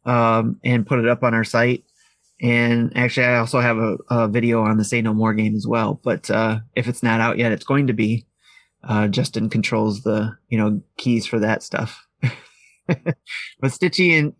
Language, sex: English, male